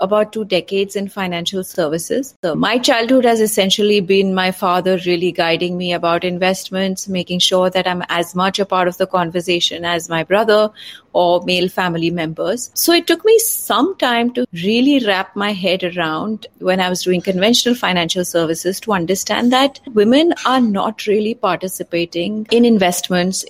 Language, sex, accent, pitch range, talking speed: English, female, Indian, 175-215 Hz, 170 wpm